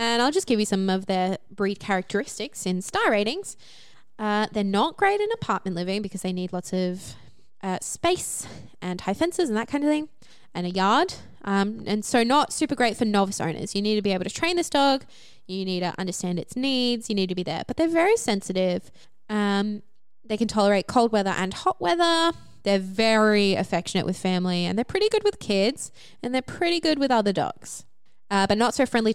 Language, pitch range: English, 185-255 Hz